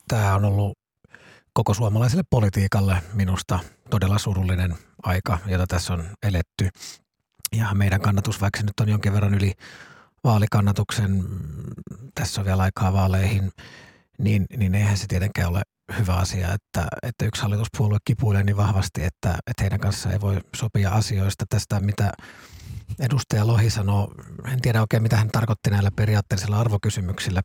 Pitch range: 95-110 Hz